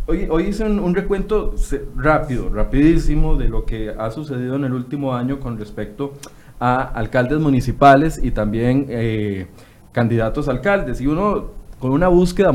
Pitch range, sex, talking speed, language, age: 120-140 Hz, male, 160 wpm, Spanish, 30-49